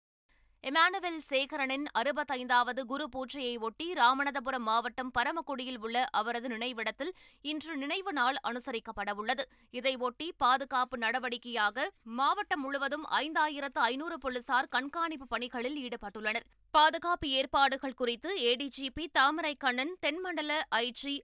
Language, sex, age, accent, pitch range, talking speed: Tamil, female, 20-39, native, 245-300 Hz, 95 wpm